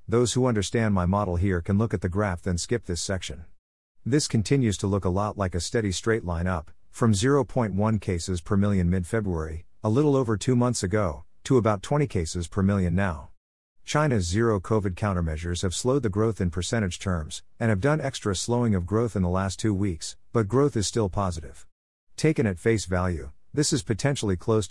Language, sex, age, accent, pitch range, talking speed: English, male, 50-69, American, 90-115 Hz, 195 wpm